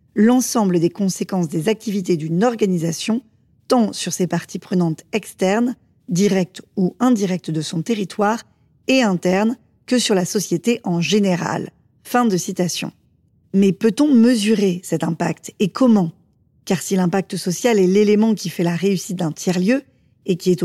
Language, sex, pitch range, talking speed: French, female, 175-220 Hz, 150 wpm